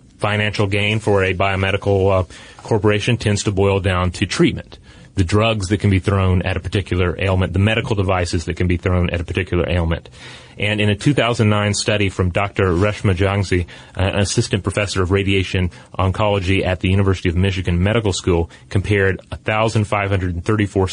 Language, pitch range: English, 90-110 Hz